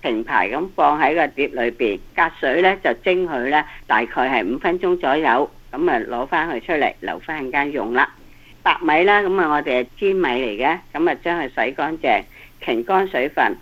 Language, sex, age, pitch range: Chinese, female, 60-79, 135-190 Hz